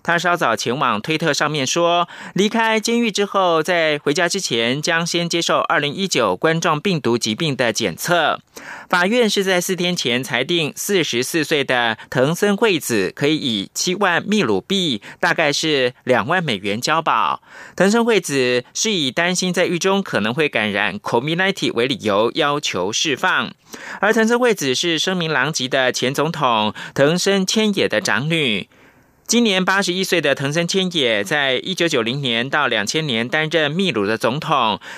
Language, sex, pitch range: German, male, 140-190 Hz